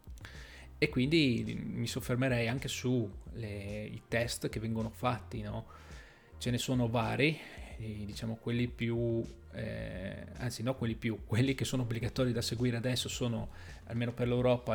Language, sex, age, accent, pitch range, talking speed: Italian, male, 20-39, native, 110-125 Hz, 150 wpm